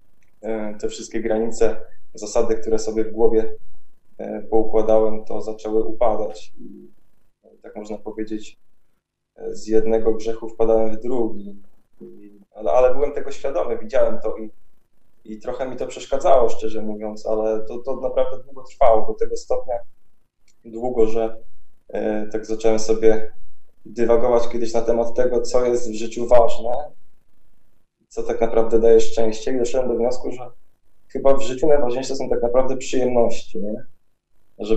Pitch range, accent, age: 110-125 Hz, native, 20-39